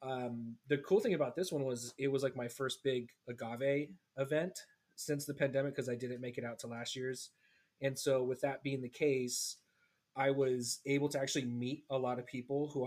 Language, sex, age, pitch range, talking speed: English, male, 30-49, 125-155 Hz, 215 wpm